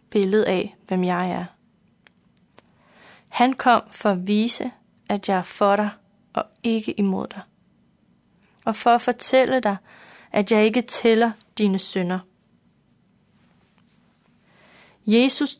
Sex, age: female, 30-49